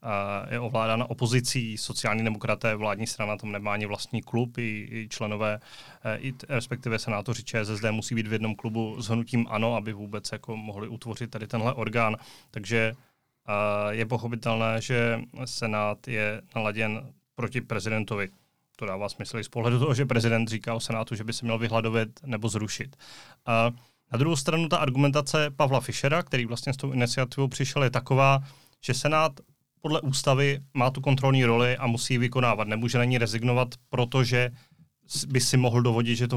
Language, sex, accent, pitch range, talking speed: Czech, male, native, 110-130 Hz, 170 wpm